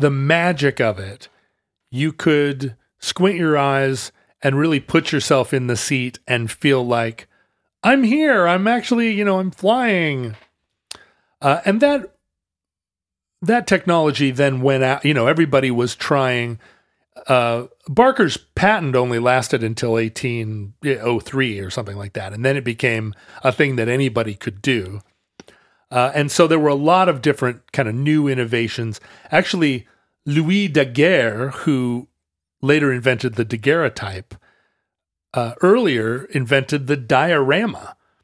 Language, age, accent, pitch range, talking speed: English, 30-49, American, 120-155 Hz, 135 wpm